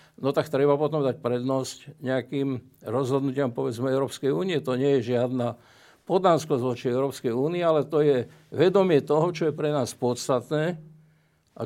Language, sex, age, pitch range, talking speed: Slovak, male, 60-79, 130-175 Hz, 155 wpm